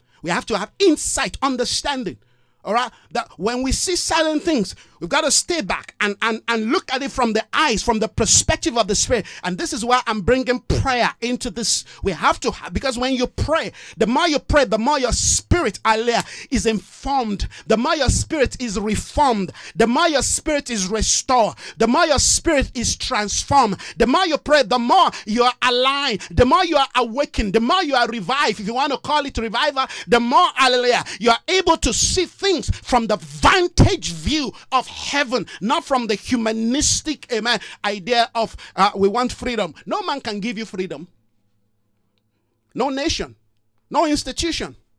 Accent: Nigerian